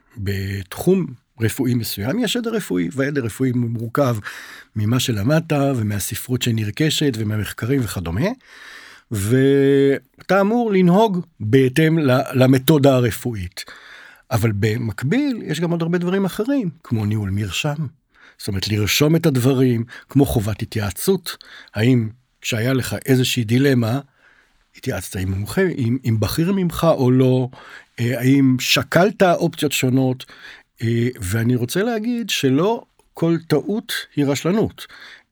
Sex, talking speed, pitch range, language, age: male, 105 wpm, 115-160 Hz, Hebrew, 60-79